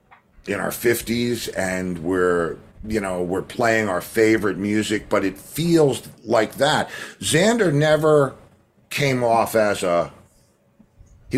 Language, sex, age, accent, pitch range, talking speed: English, male, 50-69, American, 95-140 Hz, 125 wpm